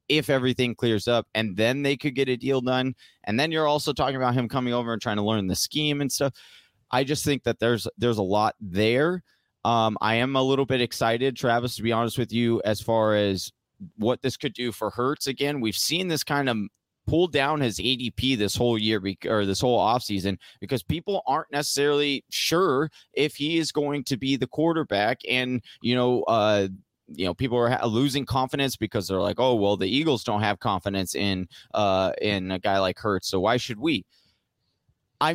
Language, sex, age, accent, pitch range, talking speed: English, male, 30-49, American, 110-140 Hz, 210 wpm